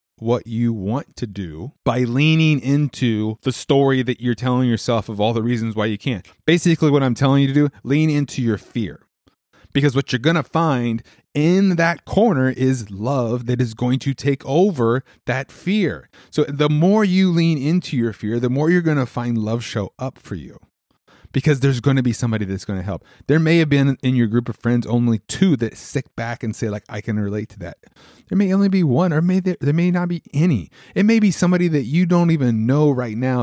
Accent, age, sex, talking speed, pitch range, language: American, 30-49, male, 225 wpm, 115-145 Hz, English